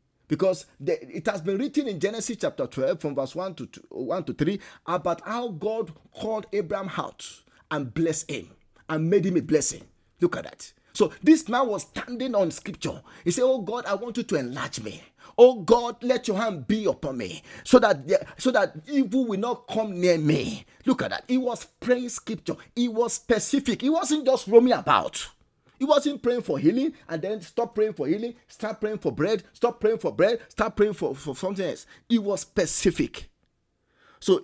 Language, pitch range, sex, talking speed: English, 185-245 Hz, male, 200 wpm